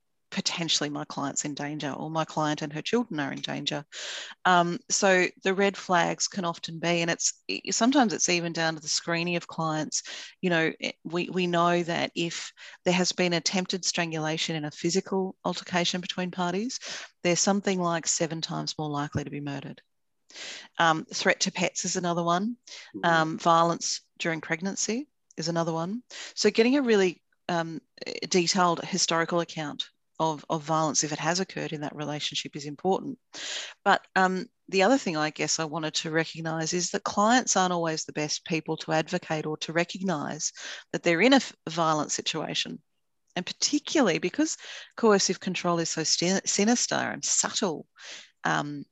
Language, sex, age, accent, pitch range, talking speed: English, female, 40-59, Australian, 160-195 Hz, 165 wpm